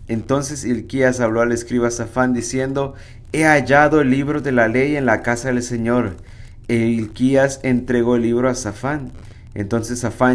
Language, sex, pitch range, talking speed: Spanish, male, 110-130 Hz, 155 wpm